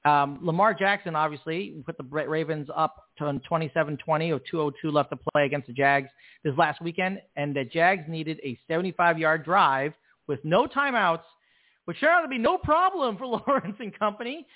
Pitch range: 150-200 Hz